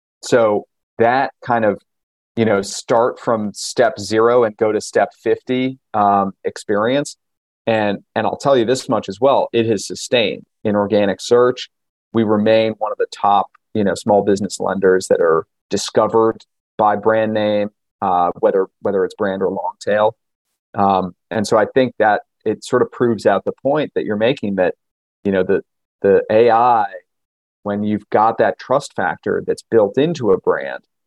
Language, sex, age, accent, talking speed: English, male, 40-59, American, 175 wpm